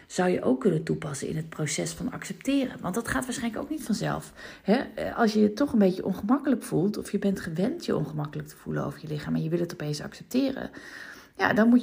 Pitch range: 180-250 Hz